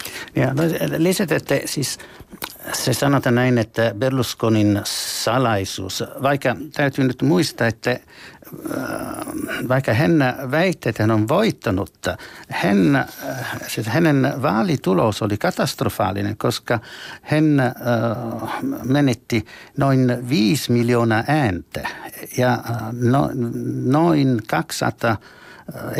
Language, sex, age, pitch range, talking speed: Finnish, male, 60-79, 110-145 Hz, 80 wpm